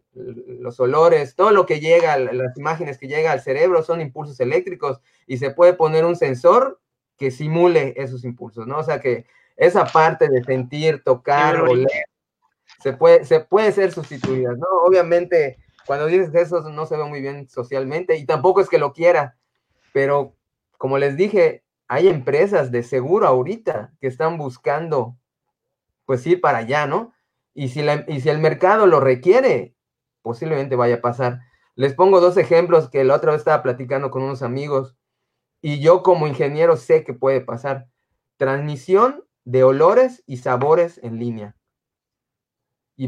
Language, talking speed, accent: Spanish, 165 wpm, Mexican